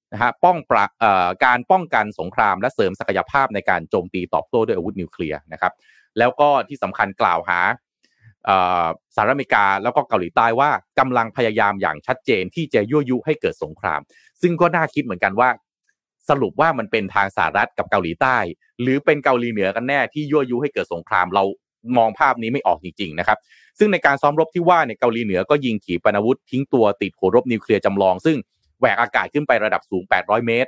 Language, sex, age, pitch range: Thai, male, 30-49, 100-150 Hz